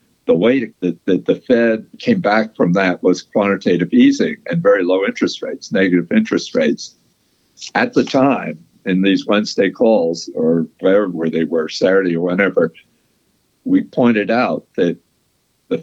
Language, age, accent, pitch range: English, 60-79, American, 90-130 Hz